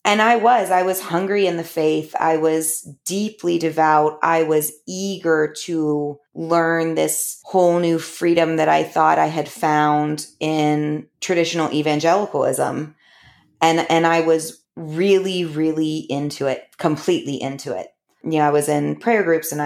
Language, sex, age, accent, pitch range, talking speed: English, female, 20-39, American, 150-170 Hz, 155 wpm